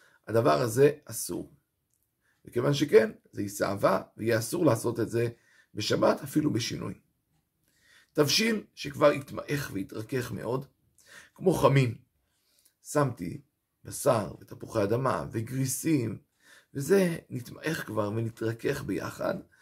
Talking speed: 100 wpm